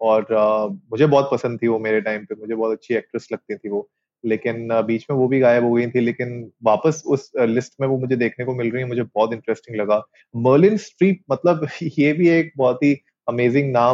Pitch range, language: 120-145 Hz, Hindi